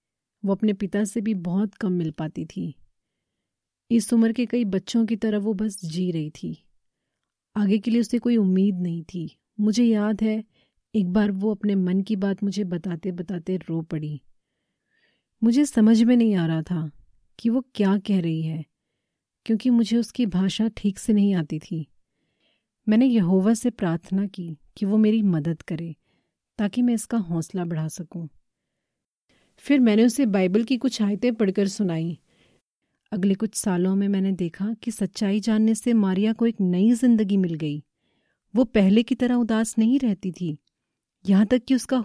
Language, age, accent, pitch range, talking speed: Hindi, 30-49, native, 180-225 Hz, 175 wpm